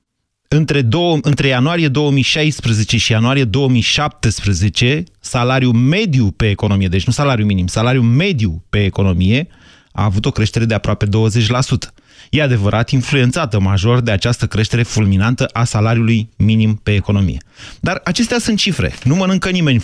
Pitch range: 110-155 Hz